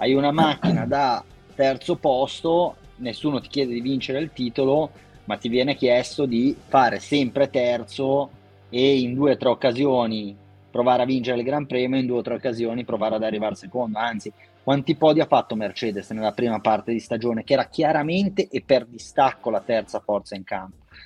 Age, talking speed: 30-49, 180 wpm